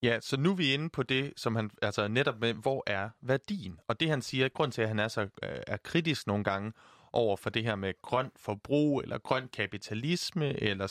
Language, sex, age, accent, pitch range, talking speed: Danish, male, 30-49, native, 110-145 Hz, 225 wpm